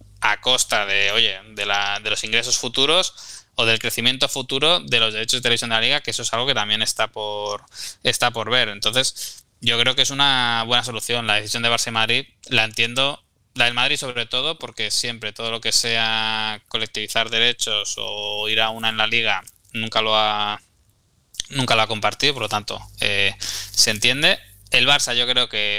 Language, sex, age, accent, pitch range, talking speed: Spanish, male, 20-39, Spanish, 105-120 Hz, 200 wpm